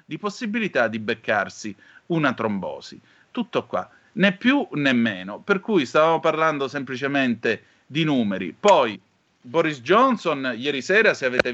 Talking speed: 135 wpm